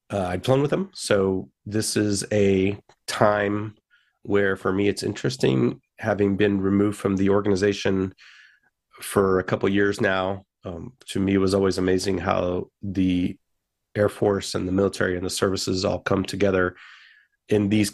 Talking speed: 160 wpm